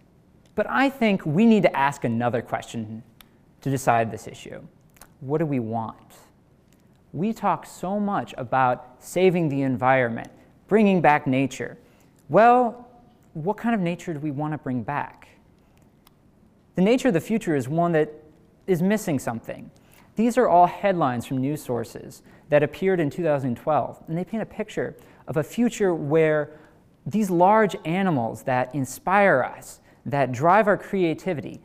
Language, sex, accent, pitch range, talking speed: English, male, American, 135-190 Hz, 150 wpm